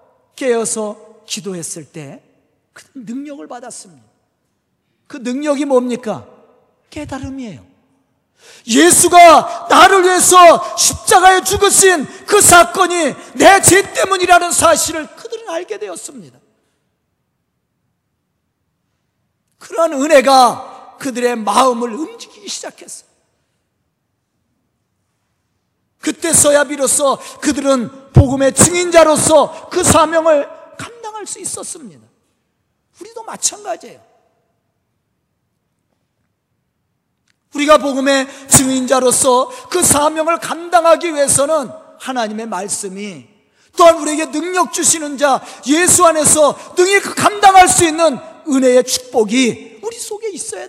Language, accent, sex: Korean, native, male